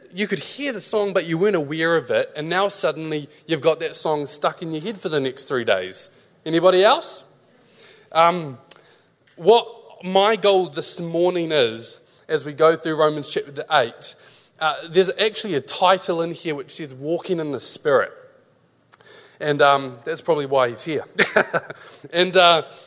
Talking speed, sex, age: 170 wpm, male, 20-39